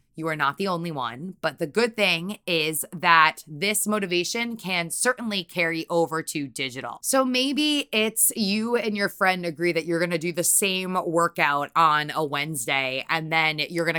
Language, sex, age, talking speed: English, female, 20-39, 185 wpm